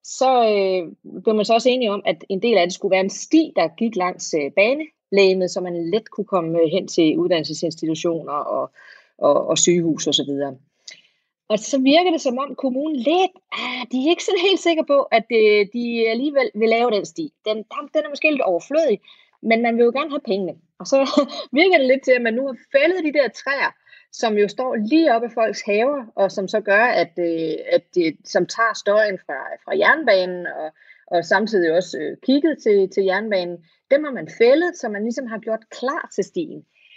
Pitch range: 180-275 Hz